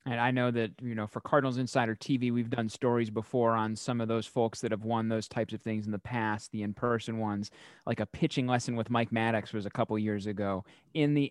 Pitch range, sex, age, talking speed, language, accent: 110-135 Hz, male, 30-49, 250 wpm, English, American